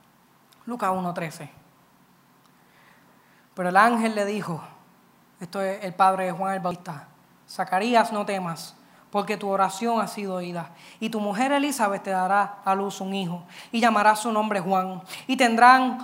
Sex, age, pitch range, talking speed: female, 10-29, 205-290 Hz, 155 wpm